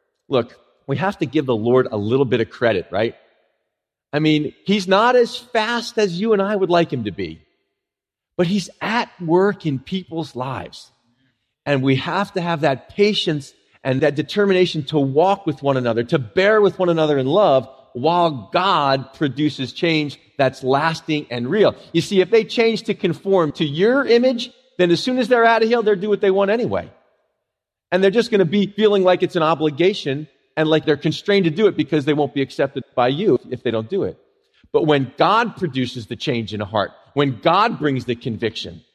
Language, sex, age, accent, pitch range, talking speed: English, male, 40-59, American, 135-205 Hz, 205 wpm